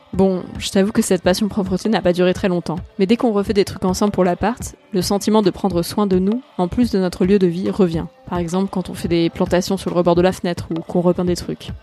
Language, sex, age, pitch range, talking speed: French, female, 20-39, 175-200 Hz, 275 wpm